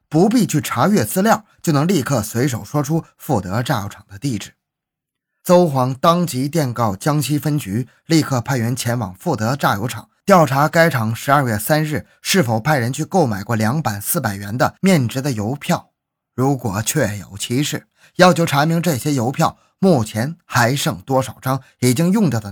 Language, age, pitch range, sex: Chinese, 20-39, 115-160 Hz, male